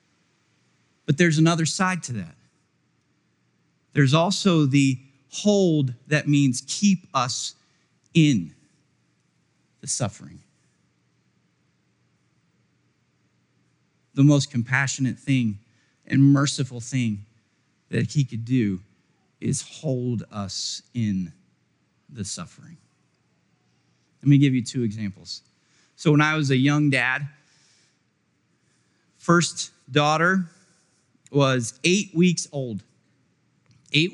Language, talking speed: English, 95 wpm